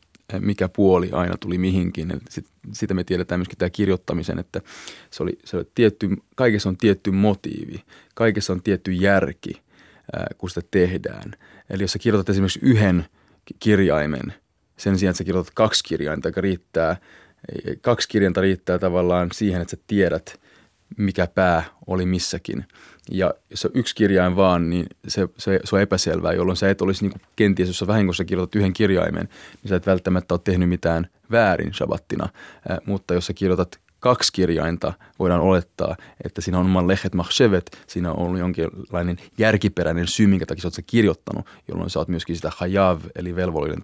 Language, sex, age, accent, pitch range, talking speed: Finnish, male, 30-49, native, 90-100 Hz, 170 wpm